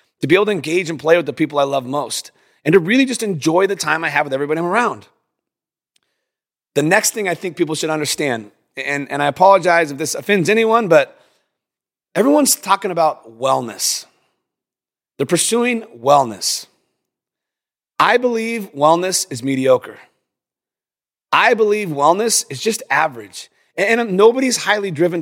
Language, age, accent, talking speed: English, 30-49, American, 155 wpm